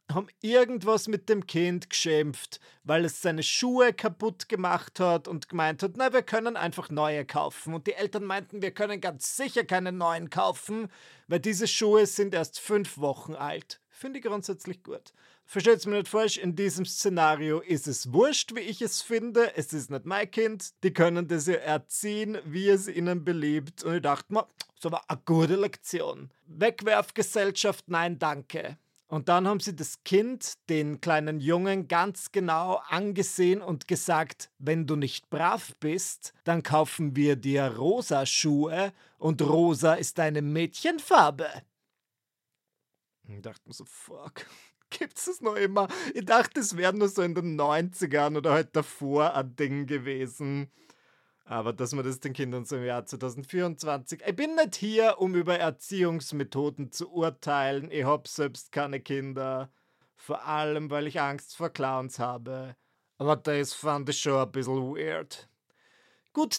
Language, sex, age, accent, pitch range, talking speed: German, male, 40-59, German, 145-200 Hz, 160 wpm